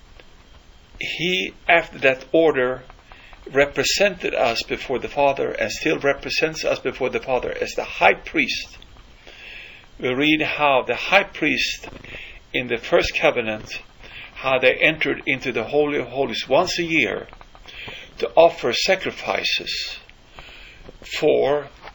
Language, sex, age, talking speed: English, male, 50-69, 125 wpm